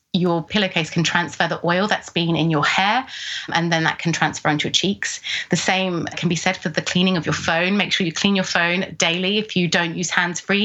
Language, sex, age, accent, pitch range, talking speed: English, female, 20-39, British, 160-185 Hz, 235 wpm